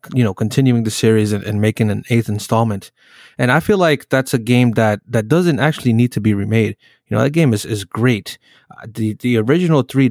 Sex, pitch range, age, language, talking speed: male, 110-130 Hz, 20-39, English, 225 wpm